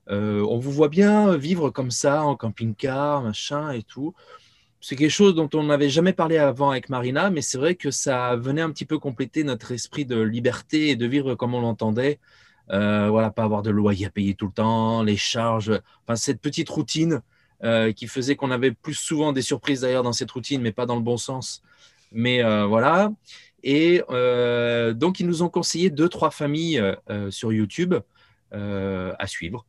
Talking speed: 200 wpm